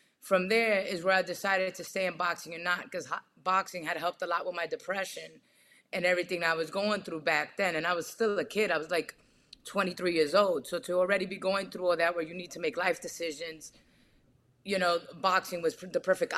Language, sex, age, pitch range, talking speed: English, female, 20-39, 170-195 Hz, 225 wpm